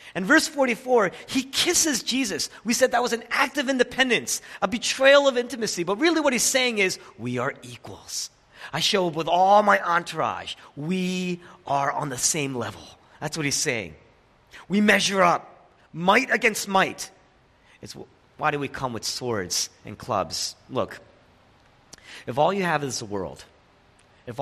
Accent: American